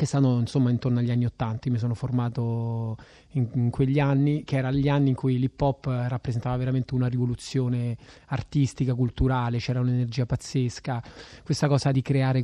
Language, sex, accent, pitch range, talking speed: Italian, male, native, 130-145 Hz, 160 wpm